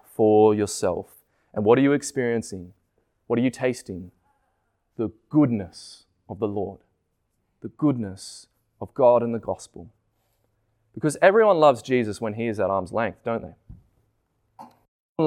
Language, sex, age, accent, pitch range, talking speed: English, male, 20-39, Australian, 105-155 Hz, 140 wpm